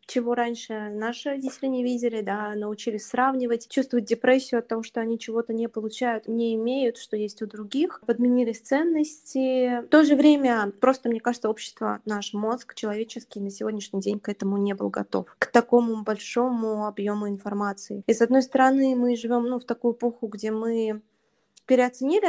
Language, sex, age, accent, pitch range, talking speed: Russian, female, 20-39, native, 210-245 Hz, 170 wpm